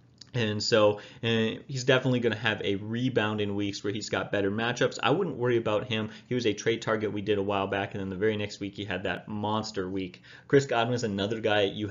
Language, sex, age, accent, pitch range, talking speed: English, male, 30-49, American, 105-125 Hz, 245 wpm